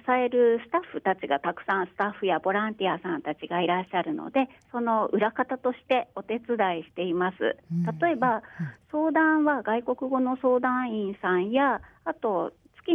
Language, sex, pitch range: Japanese, female, 195-265 Hz